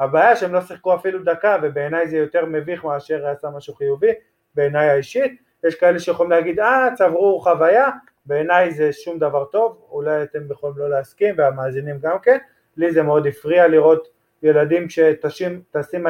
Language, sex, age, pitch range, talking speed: Hebrew, male, 20-39, 155-190 Hz, 160 wpm